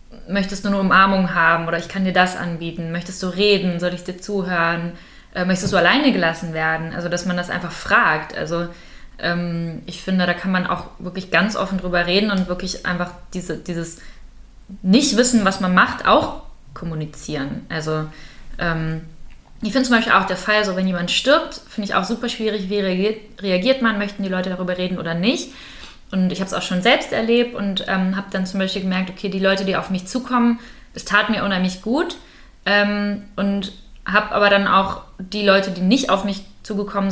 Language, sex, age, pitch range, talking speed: German, female, 20-39, 170-200 Hz, 190 wpm